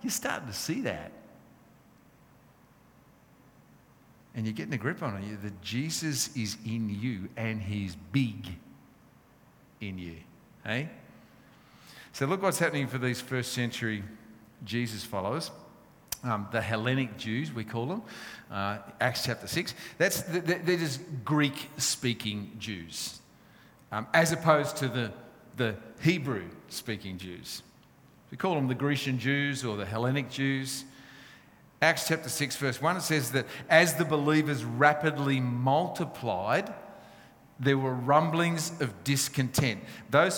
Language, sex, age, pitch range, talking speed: English, male, 50-69, 110-150 Hz, 125 wpm